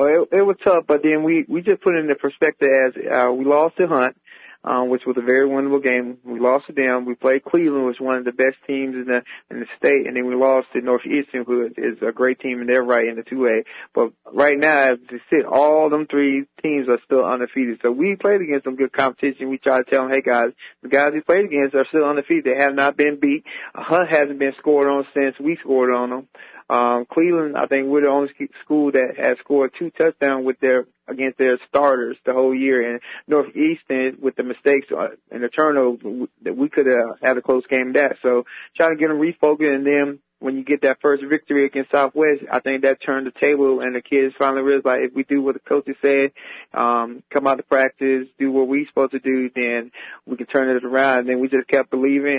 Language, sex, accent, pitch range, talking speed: English, male, American, 125-140 Hz, 245 wpm